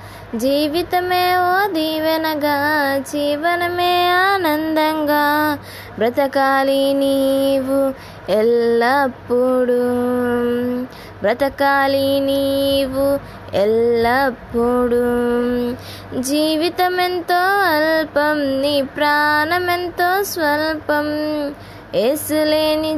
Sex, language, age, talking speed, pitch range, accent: female, Telugu, 20-39, 45 wpm, 270-340 Hz, native